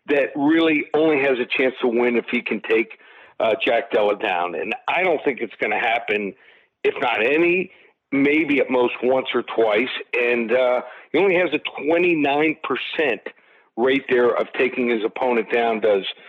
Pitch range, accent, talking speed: 120-165 Hz, American, 175 wpm